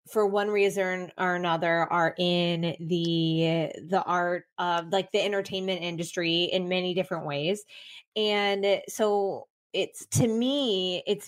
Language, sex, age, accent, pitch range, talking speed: English, female, 20-39, American, 180-220 Hz, 135 wpm